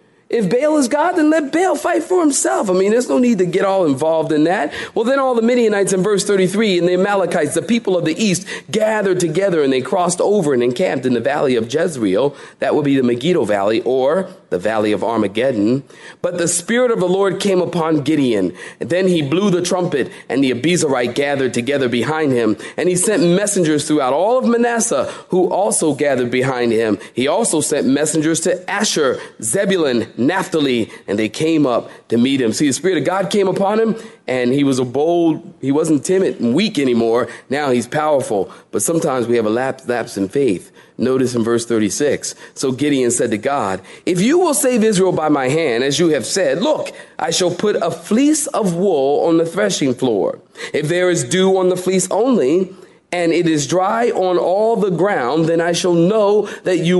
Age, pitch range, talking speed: 40-59, 145-200 Hz, 205 wpm